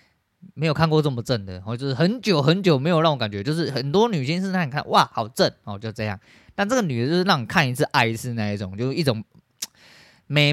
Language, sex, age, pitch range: Chinese, male, 20-39, 105-145 Hz